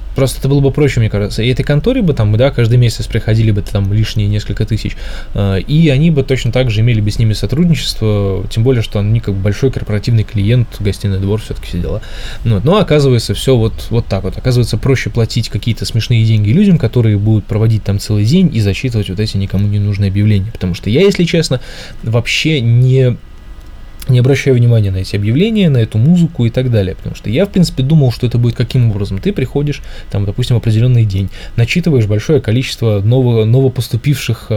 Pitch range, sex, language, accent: 105-130 Hz, male, Russian, native